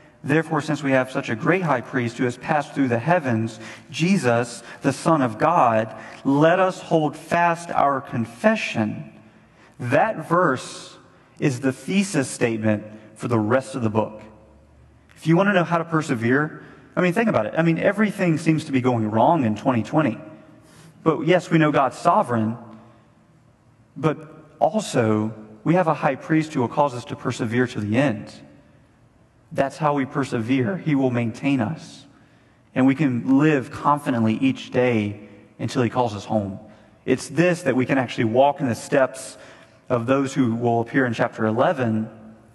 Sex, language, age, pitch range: male, English, 40-59, 115-155 Hz